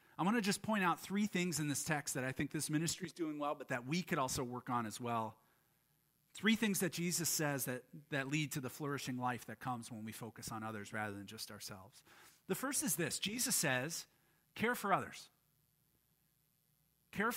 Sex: male